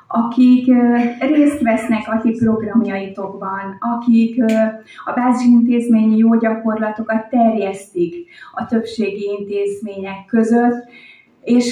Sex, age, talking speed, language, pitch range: female, 30-49, 90 wpm, Hungarian, 200-230 Hz